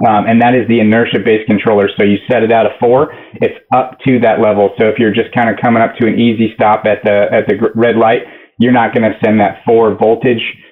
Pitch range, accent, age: 105-120 Hz, American, 40-59